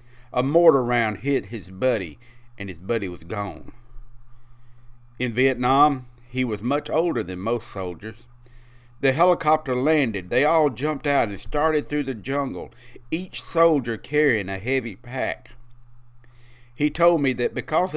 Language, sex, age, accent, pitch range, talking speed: English, male, 50-69, American, 115-130 Hz, 145 wpm